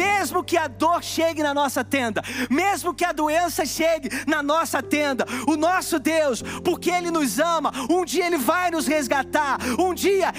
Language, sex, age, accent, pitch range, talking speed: Portuguese, male, 40-59, Brazilian, 300-345 Hz, 180 wpm